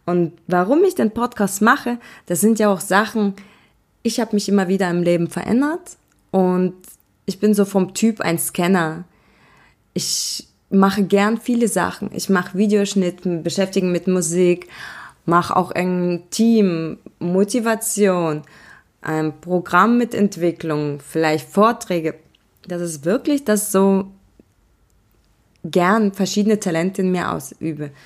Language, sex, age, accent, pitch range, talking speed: German, female, 20-39, German, 175-210 Hz, 130 wpm